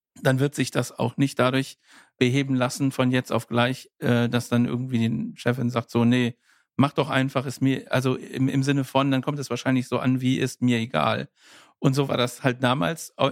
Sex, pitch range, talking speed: male, 125-145 Hz, 210 wpm